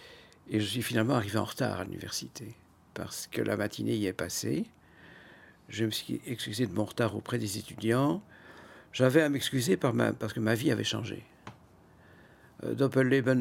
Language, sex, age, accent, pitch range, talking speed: French, male, 60-79, French, 100-115 Hz, 170 wpm